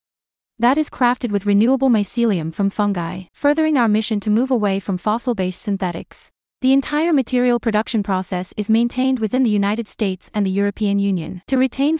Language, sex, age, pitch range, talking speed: English, female, 30-49, 200-250 Hz, 170 wpm